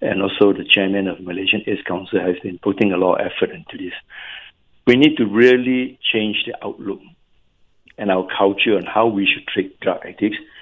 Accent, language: Malaysian, English